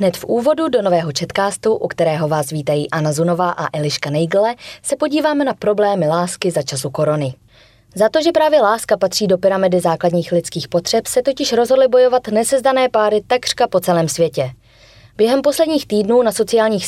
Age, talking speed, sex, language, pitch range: 20-39, 175 wpm, female, Czech, 160-220 Hz